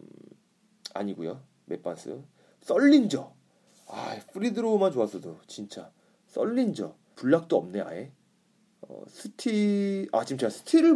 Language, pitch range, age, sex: Korean, 125-210 Hz, 30-49, male